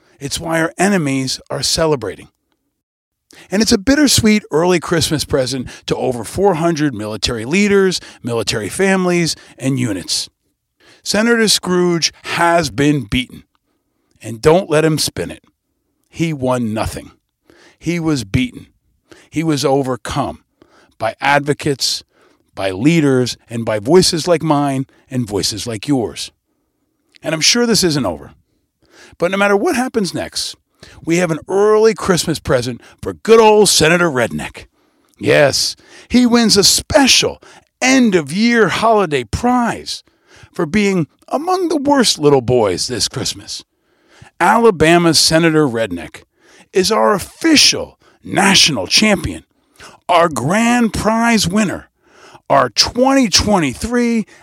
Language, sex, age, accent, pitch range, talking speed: English, male, 50-69, American, 135-210 Hz, 120 wpm